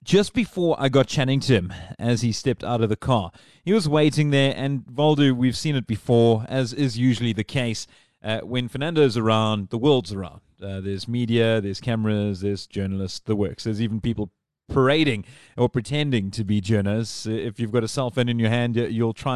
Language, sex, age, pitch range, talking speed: English, male, 30-49, 110-135 Hz, 200 wpm